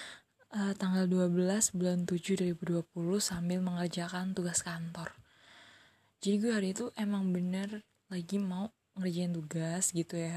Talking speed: 125 wpm